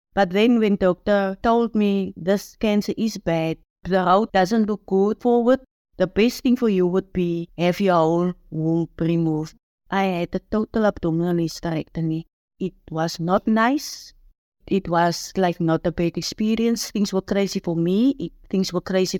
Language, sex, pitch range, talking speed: English, female, 170-210 Hz, 170 wpm